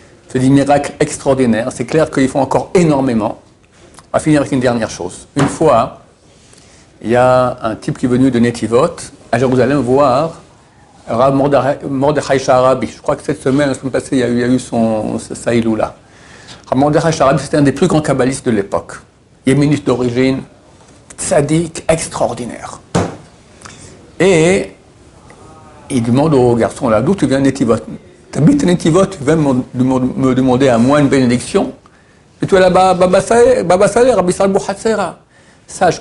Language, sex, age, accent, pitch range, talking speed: French, male, 60-79, French, 125-160 Hz, 150 wpm